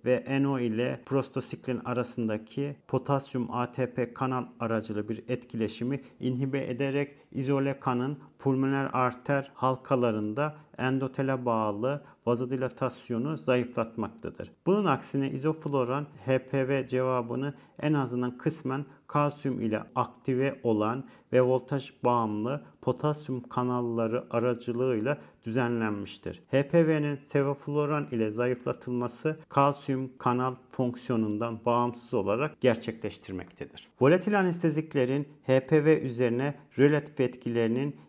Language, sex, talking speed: Turkish, male, 90 wpm